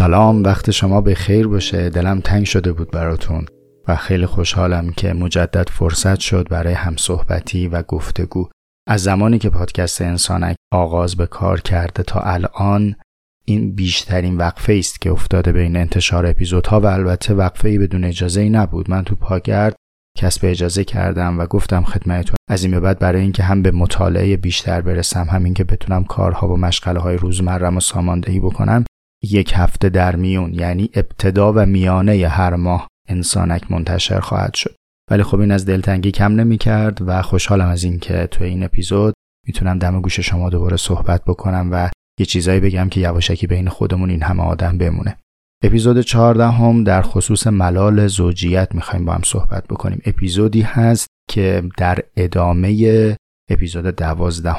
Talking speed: 160 wpm